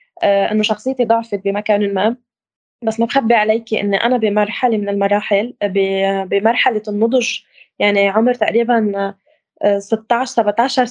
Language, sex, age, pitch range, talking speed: Arabic, female, 20-39, 205-240 Hz, 115 wpm